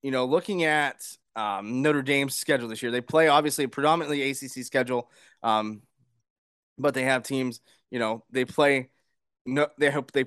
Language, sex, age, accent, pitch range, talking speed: English, male, 20-39, American, 125-155 Hz, 170 wpm